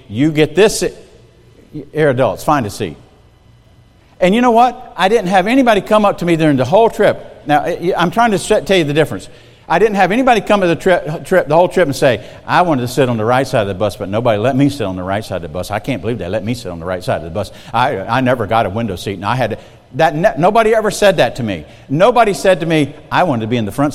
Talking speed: 285 wpm